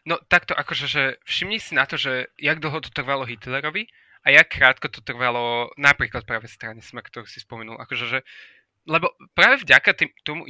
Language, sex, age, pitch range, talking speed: Slovak, male, 20-39, 125-170 Hz, 190 wpm